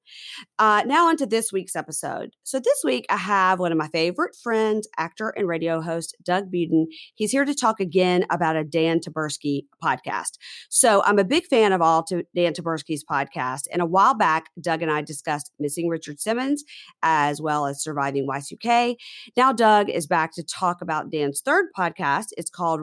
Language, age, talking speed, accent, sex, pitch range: English, 40-59, 190 wpm, American, female, 155-210 Hz